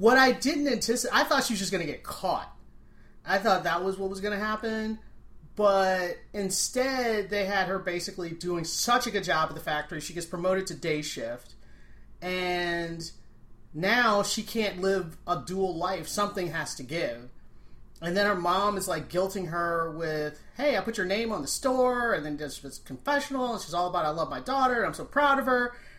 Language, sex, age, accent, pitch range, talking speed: English, male, 30-49, American, 160-210 Hz, 205 wpm